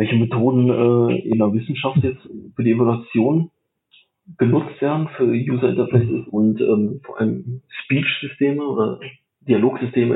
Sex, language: male, German